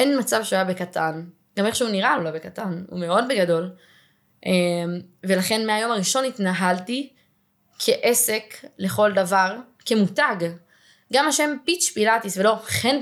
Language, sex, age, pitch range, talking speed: Hebrew, female, 20-39, 180-220 Hz, 130 wpm